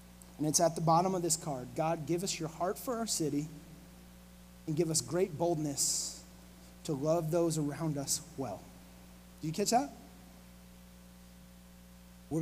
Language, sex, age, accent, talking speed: English, male, 30-49, American, 155 wpm